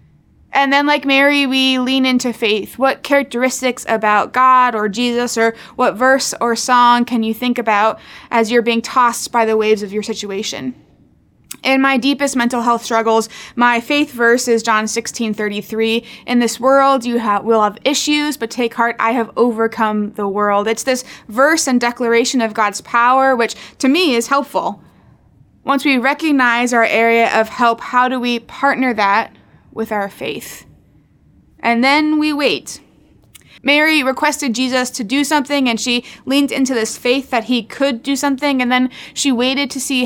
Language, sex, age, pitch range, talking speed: English, female, 20-39, 225-265 Hz, 175 wpm